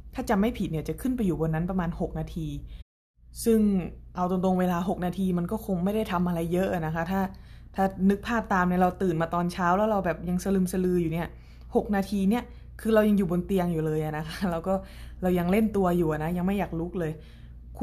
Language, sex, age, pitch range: Thai, female, 20-39, 160-195 Hz